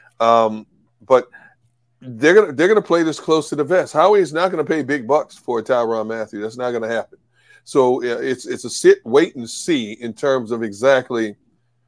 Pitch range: 130-180 Hz